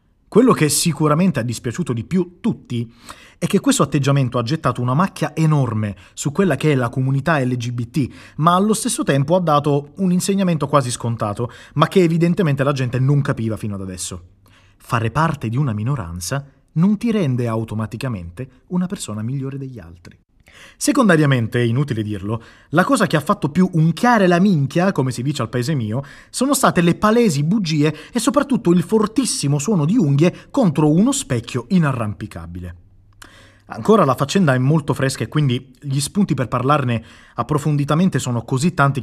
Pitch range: 115-165 Hz